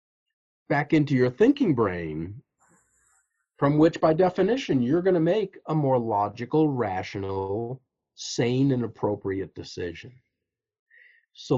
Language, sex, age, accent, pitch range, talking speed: English, male, 50-69, American, 115-170 Hz, 115 wpm